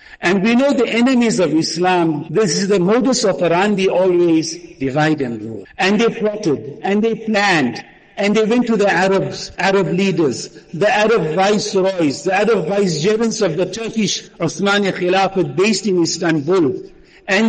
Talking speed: 155 wpm